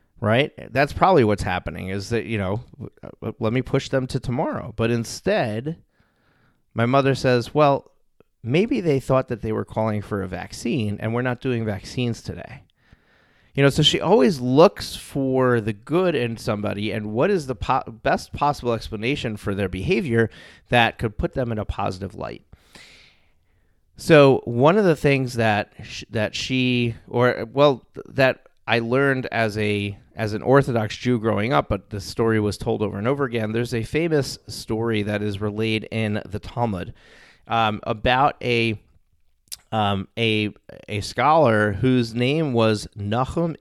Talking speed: 160 wpm